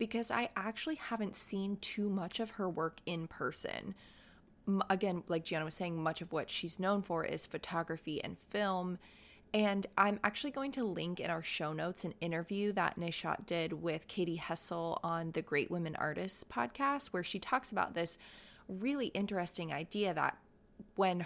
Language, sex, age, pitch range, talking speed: English, female, 20-39, 165-210 Hz, 170 wpm